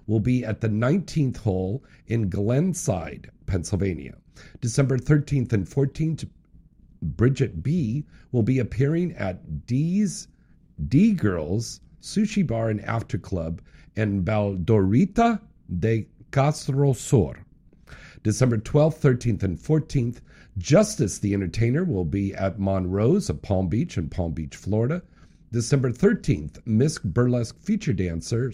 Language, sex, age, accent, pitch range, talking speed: English, male, 50-69, American, 100-145 Hz, 120 wpm